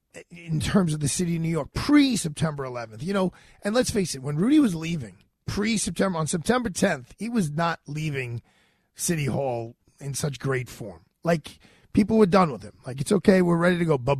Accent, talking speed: American, 210 wpm